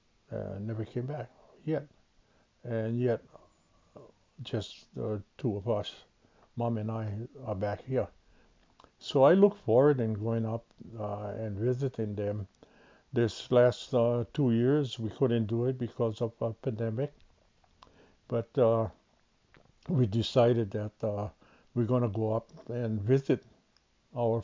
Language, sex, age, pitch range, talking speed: English, male, 60-79, 105-125 Hz, 135 wpm